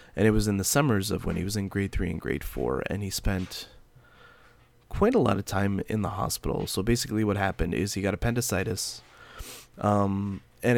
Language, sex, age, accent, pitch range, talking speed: English, male, 20-39, American, 95-115 Hz, 205 wpm